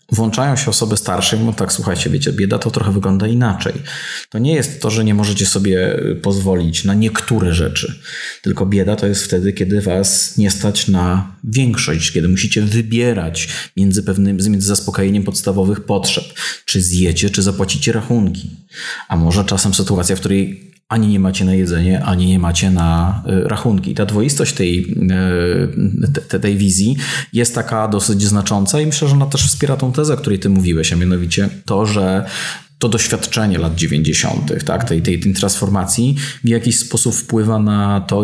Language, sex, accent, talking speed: Polish, male, native, 165 wpm